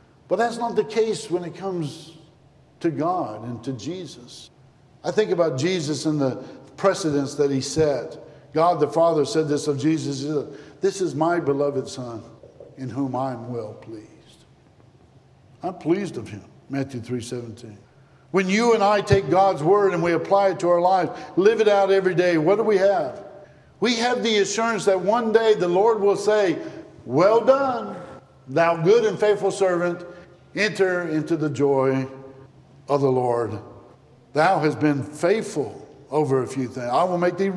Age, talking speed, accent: 60-79, 170 wpm, American